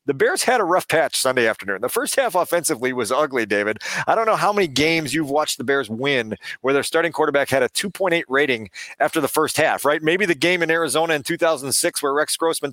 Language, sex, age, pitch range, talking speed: English, male, 40-59, 130-165 Hz, 230 wpm